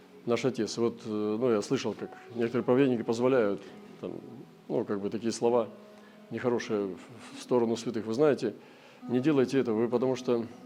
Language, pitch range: Russian, 115-155 Hz